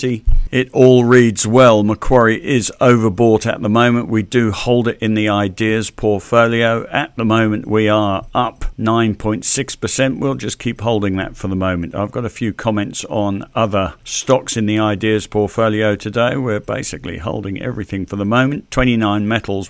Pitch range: 100-120 Hz